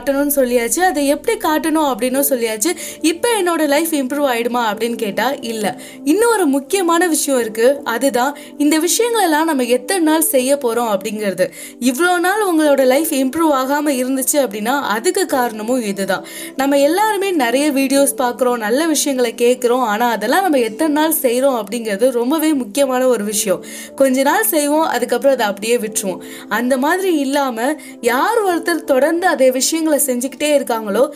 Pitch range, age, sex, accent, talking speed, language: 240-305 Hz, 20-39, female, native, 55 wpm, Tamil